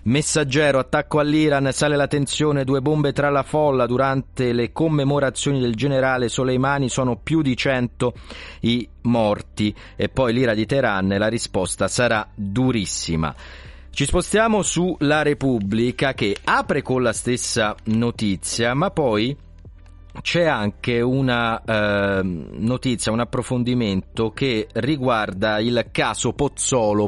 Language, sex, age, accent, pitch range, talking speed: Italian, male, 40-59, native, 105-140 Hz, 125 wpm